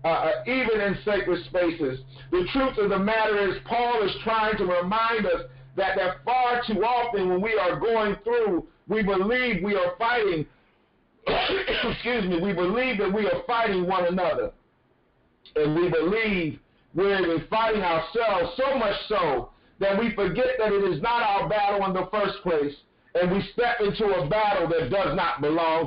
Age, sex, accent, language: 50-69, male, American, English